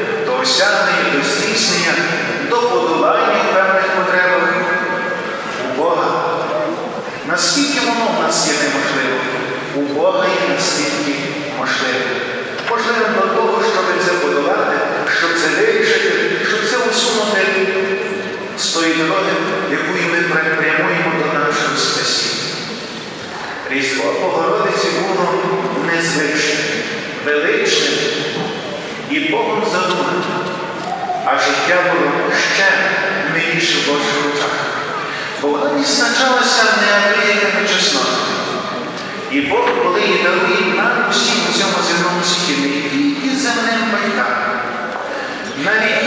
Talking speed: 110 wpm